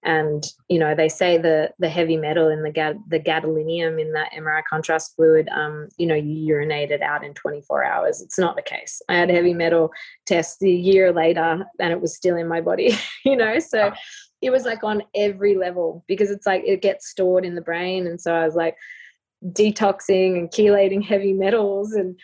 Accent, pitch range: Australian, 165-195 Hz